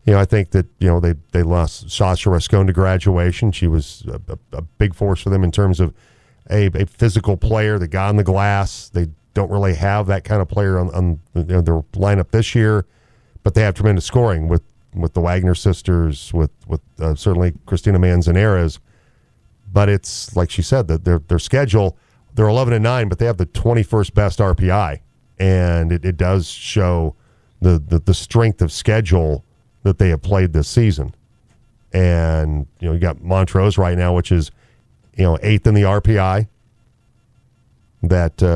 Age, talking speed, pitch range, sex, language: 40-59, 185 wpm, 90-110 Hz, male, English